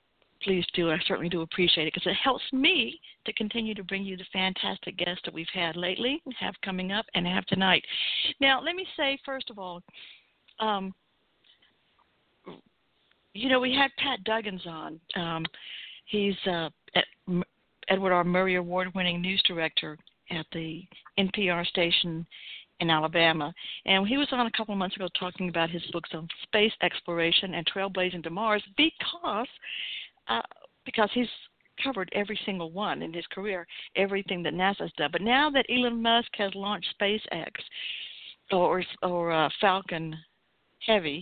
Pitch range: 170-220 Hz